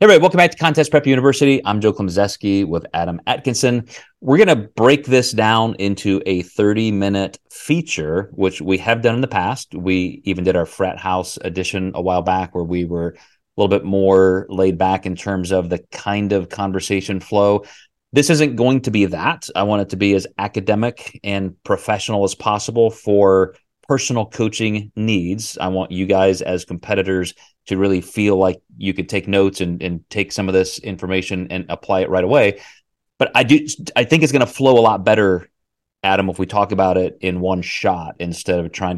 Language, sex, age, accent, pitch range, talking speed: English, male, 30-49, American, 95-115 Hz, 200 wpm